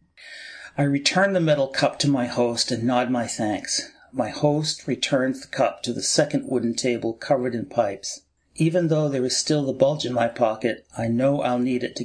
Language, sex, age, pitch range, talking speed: English, male, 40-59, 120-135 Hz, 205 wpm